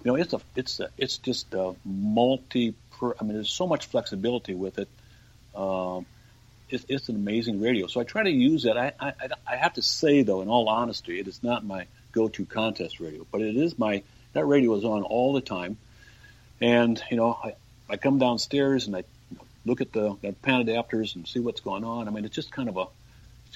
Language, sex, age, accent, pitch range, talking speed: English, male, 60-79, American, 100-120 Hz, 225 wpm